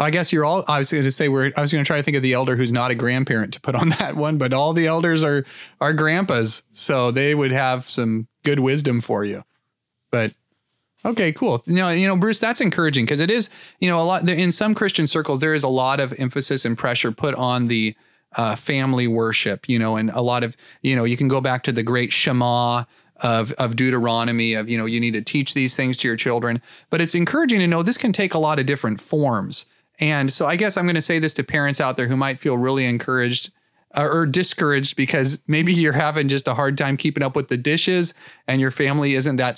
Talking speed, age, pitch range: 245 wpm, 30-49, 120-150 Hz